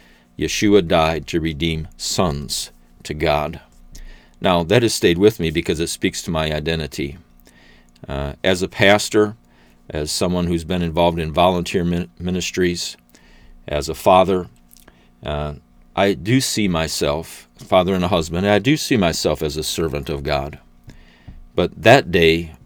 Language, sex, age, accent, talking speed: English, male, 50-69, American, 145 wpm